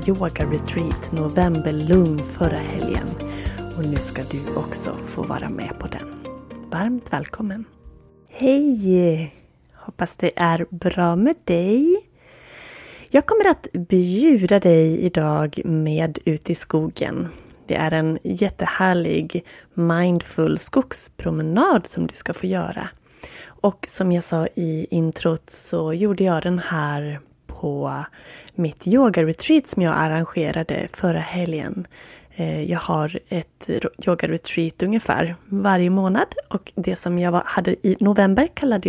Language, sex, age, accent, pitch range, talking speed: Swedish, female, 30-49, native, 160-190 Hz, 120 wpm